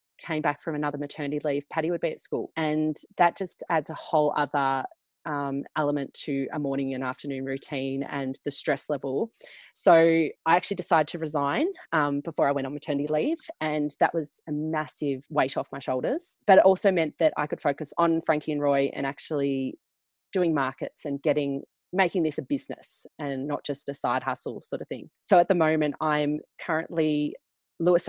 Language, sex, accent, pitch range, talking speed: English, female, Australian, 140-165 Hz, 190 wpm